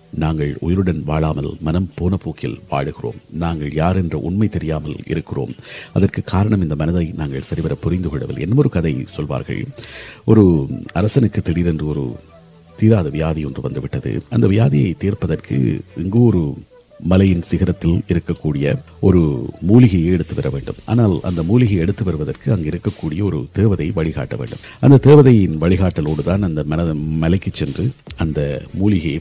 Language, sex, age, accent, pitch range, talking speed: Tamil, male, 50-69, native, 80-95 Hz, 125 wpm